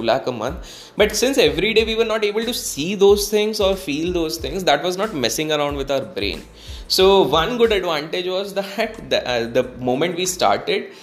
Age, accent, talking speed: 20-39, Indian, 210 wpm